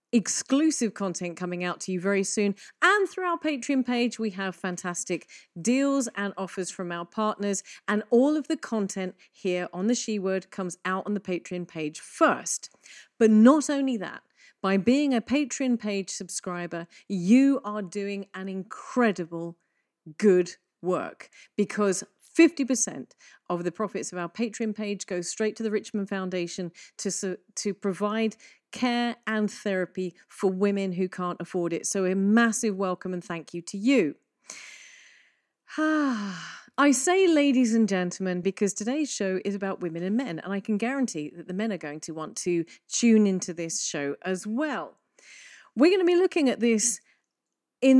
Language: English